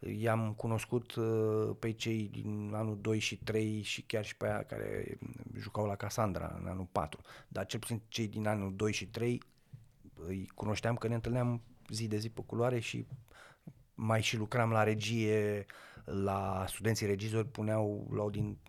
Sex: male